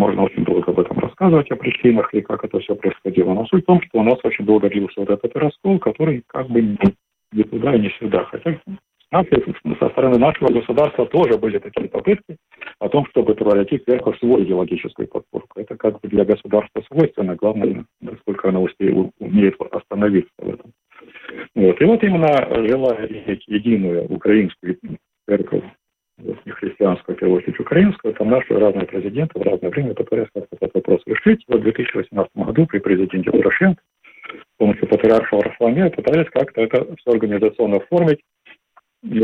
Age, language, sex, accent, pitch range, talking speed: 50-69, Russian, male, native, 100-155 Hz, 155 wpm